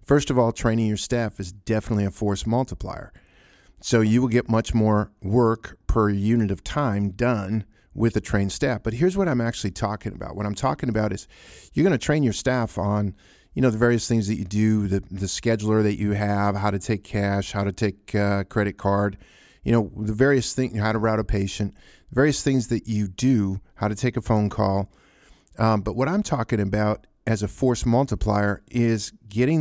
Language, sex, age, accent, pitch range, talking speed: English, male, 50-69, American, 105-120 Hz, 210 wpm